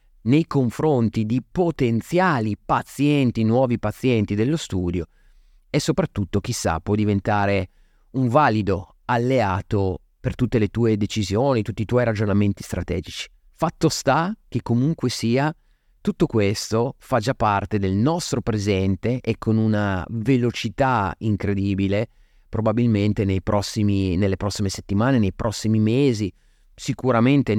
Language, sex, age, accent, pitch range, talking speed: Italian, male, 30-49, native, 100-135 Hz, 115 wpm